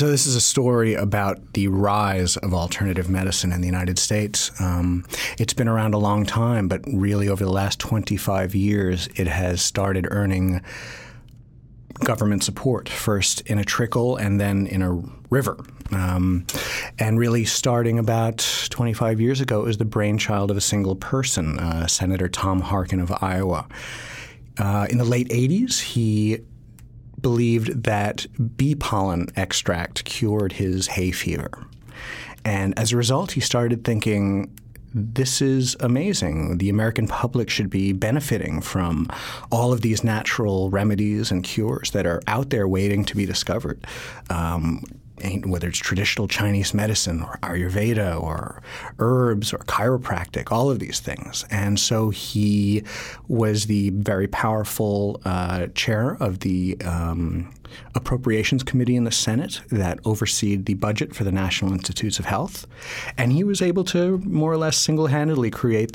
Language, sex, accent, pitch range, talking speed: English, male, American, 95-120 Hz, 150 wpm